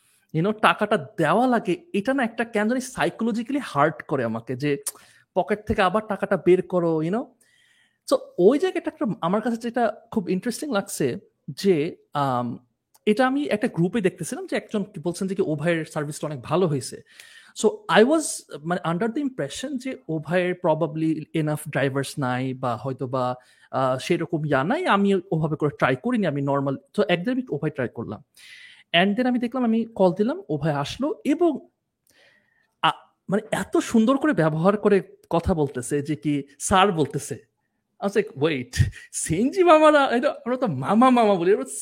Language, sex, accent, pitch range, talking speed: Bengali, male, native, 155-250 Hz, 55 wpm